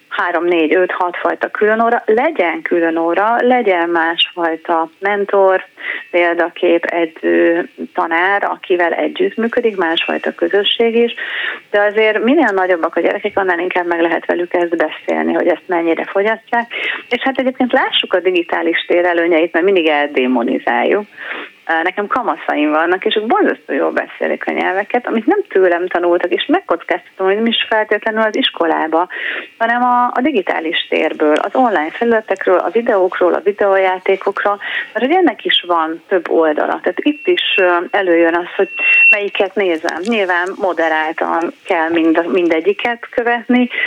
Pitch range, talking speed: 165-225 Hz, 135 wpm